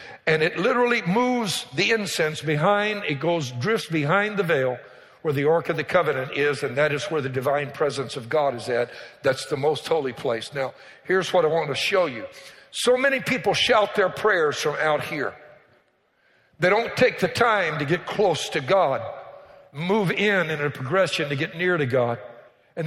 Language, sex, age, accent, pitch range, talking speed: English, male, 60-79, American, 155-205 Hz, 195 wpm